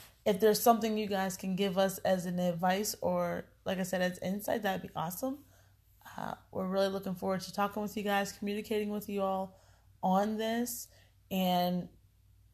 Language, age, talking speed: English, 20-39, 175 wpm